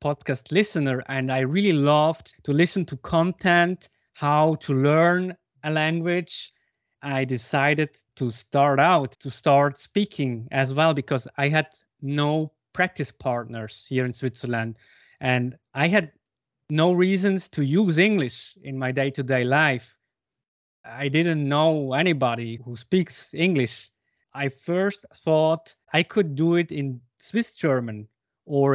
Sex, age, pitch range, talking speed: male, 20-39, 130-165 Hz, 135 wpm